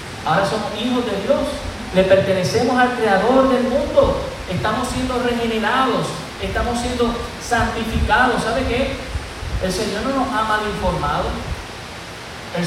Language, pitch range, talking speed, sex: Spanish, 155-215 Hz, 130 wpm, male